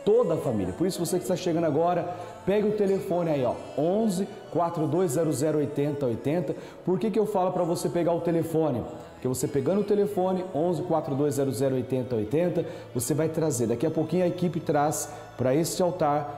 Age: 40-59